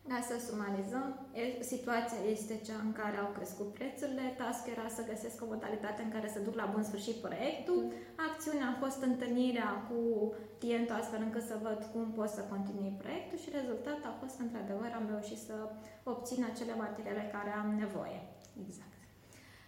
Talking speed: 170 wpm